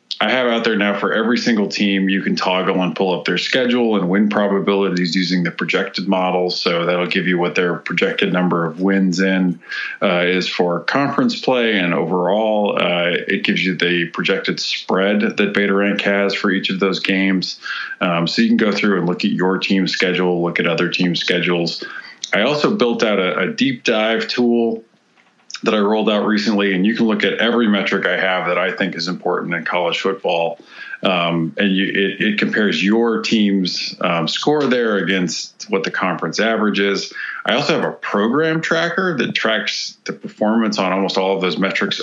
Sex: male